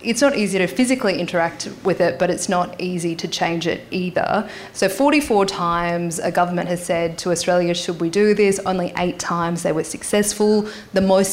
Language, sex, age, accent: English, female, 20-39, Australian